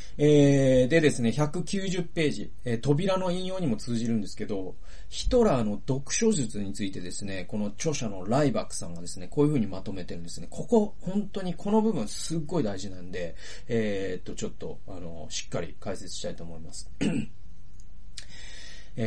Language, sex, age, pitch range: Japanese, male, 40-59, 100-155 Hz